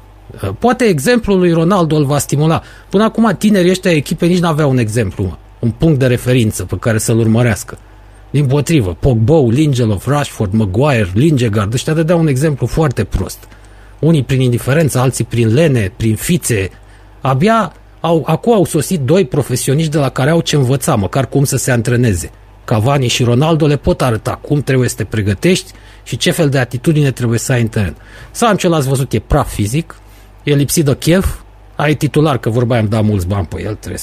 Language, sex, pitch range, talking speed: Romanian, male, 110-160 Hz, 185 wpm